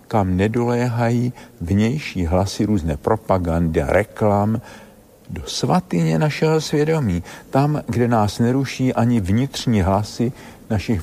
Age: 60-79